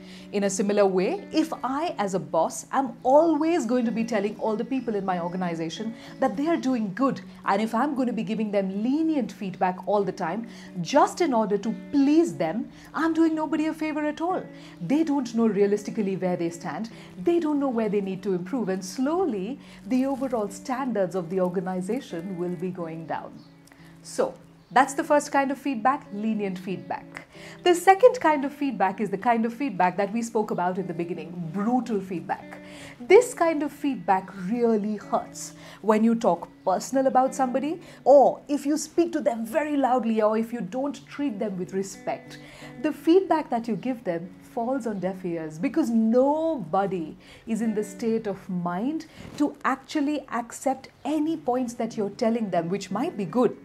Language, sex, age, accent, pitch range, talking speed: English, female, 50-69, Indian, 190-275 Hz, 190 wpm